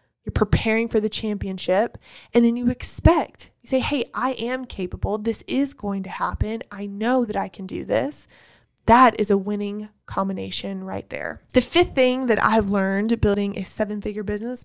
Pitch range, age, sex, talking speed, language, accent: 195-235 Hz, 20-39, female, 185 wpm, English, American